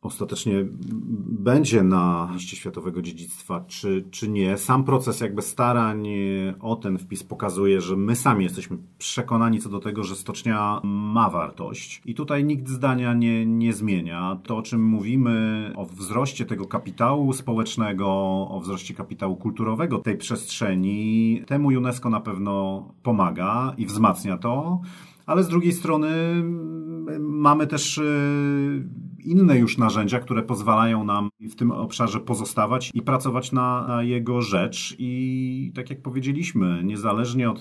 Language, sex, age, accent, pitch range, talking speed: Polish, male, 40-59, native, 105-130 Hz, 140 wpm